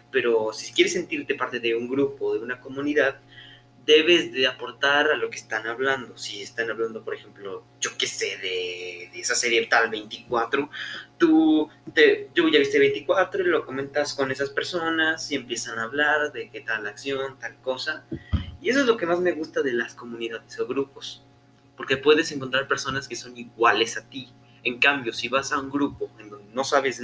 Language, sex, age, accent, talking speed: Spanish, male, 20-39, Mexican, 195 wpm